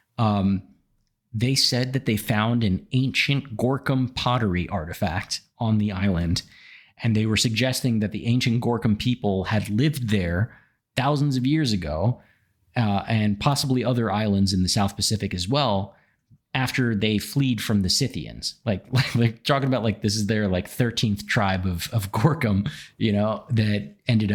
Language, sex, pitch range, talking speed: English, male, 100-125 Hz, 165 wpm